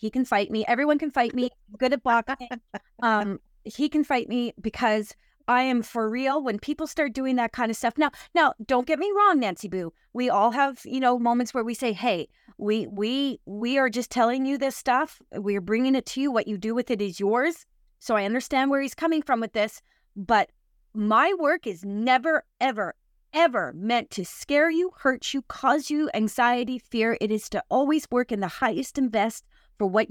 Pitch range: 210-270 Hz